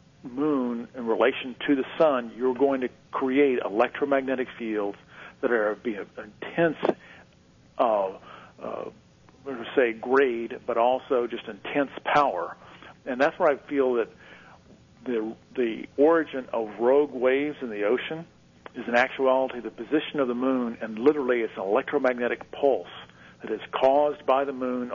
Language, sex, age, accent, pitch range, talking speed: English, male, 50-69, American, 115-135 Hz, 145 wpm